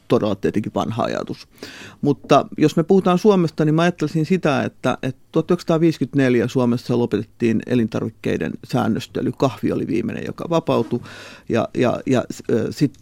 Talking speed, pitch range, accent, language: 125 wpm, 115-140 Hz, native, Finnish